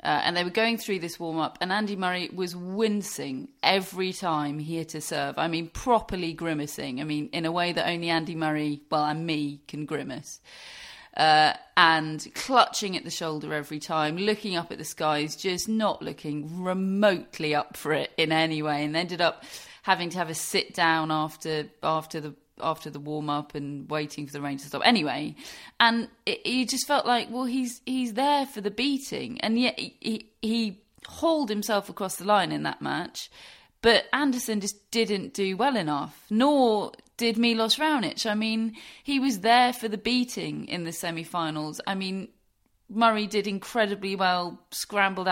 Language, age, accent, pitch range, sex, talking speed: English, 30-49, British, 160-225 Hz, female, 180 wpm